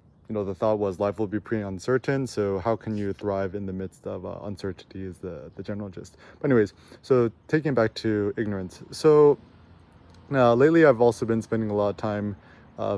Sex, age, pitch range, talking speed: male, 20-39, 105-125 Hz, 210 wpm